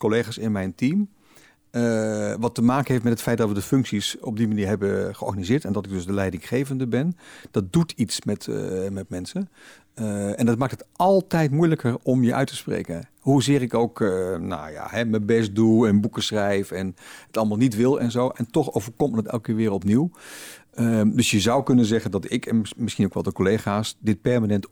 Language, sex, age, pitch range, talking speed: Dutch, male, 50-69, 105-135 Hz, 220 wpm